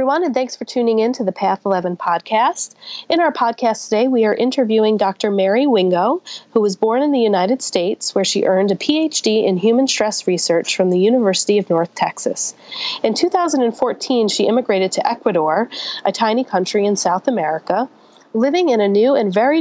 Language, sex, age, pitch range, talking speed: English, female, 30-49, 185-255 Hz, 185 wpm